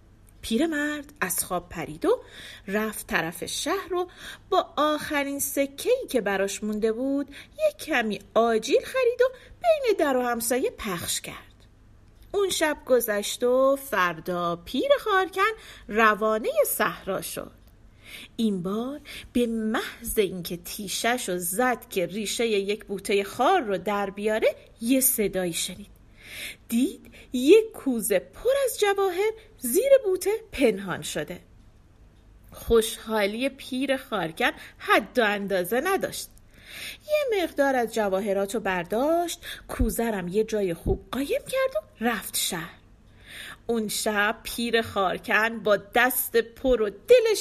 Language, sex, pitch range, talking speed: Persian, female, 200-300 Hz, 125 wpm